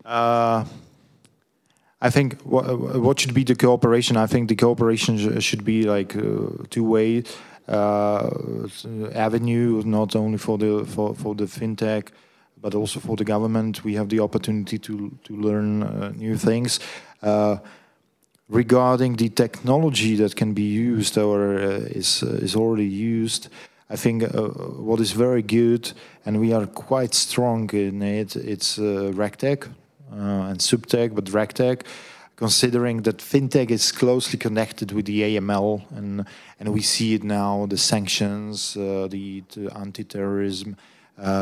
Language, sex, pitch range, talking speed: English, male, 105-115 Hz, 150 wpm